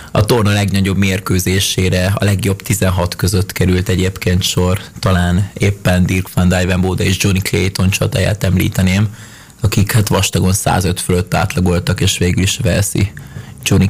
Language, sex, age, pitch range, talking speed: Hungarian, male, 20-39, 90-110 Hz, 140 wpm